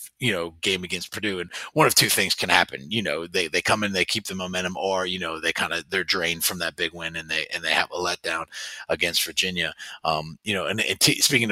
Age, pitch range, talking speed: 30-49, 85-95 Hz, 260 wpm